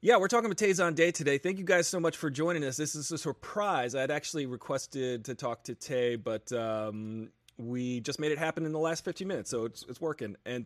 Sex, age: male, 30-49